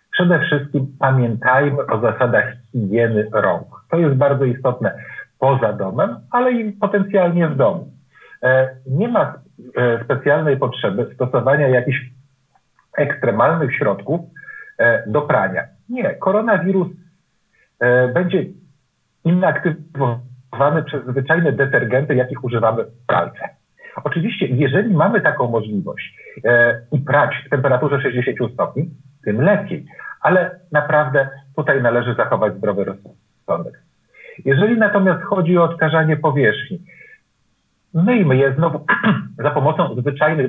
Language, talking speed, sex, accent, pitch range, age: Polish, 105 wpm, male, native, 130-180 Hz, 50-69